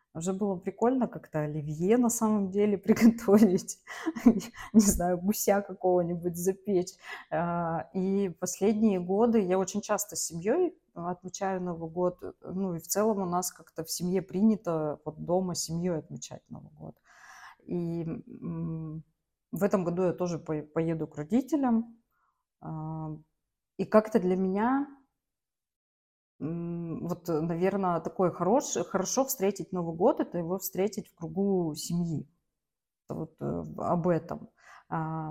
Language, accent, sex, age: Russian, native, female, 20-39